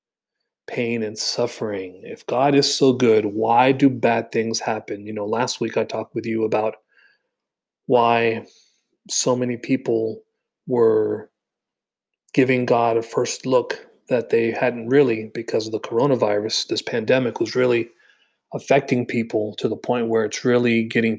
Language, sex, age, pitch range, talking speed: English, male, 40-59, 110-125 Hz, 150 wpm